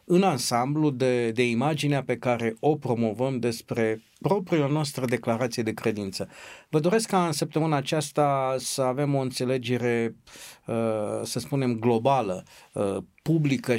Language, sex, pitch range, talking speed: Romanian, male, 120-145 Hz, 125 wpm